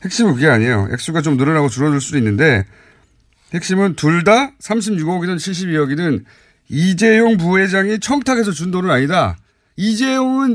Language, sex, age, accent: Korean, male, 40-59, native